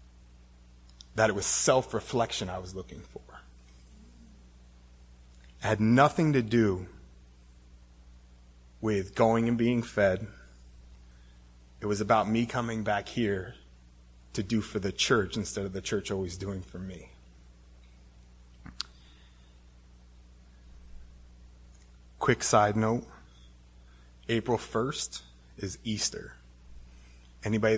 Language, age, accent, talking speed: English, 30-49, American, 100 wpm